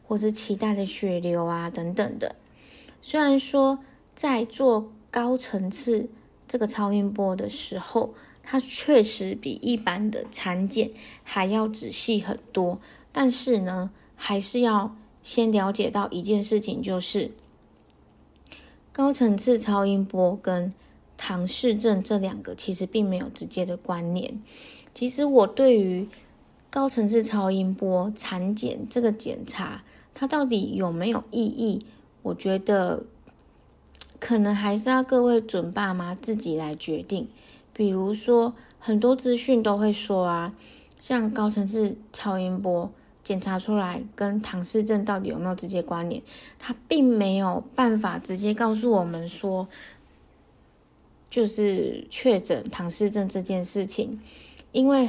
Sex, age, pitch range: female, 20-39, 190-235 Hz